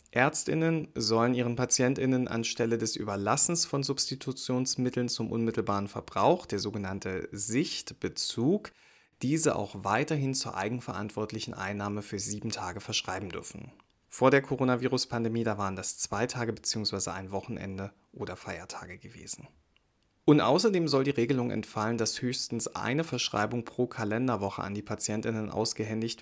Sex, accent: male, German